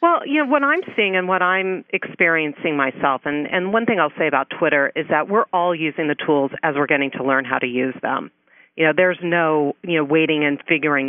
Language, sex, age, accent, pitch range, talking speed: English, female, 40-59, American, 140-175 Hz, 240 wpm